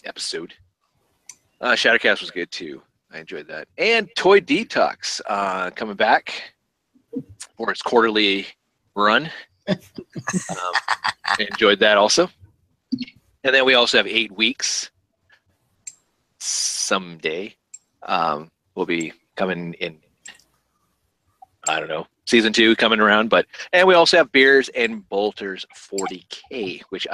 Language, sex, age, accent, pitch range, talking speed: English, male, 30-49, American, 100-155 Hz, 120 wpm